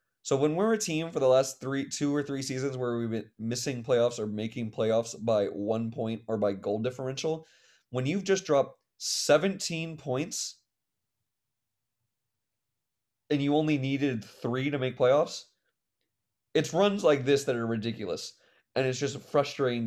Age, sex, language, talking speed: 20-39, male, English, 160 wpm